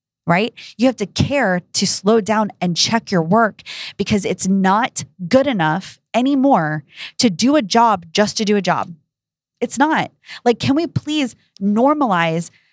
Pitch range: 180-245 Hz